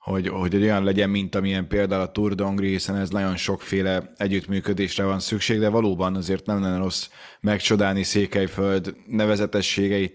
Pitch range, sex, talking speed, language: 95-105 Hz, male, 155 wpm, Hungarian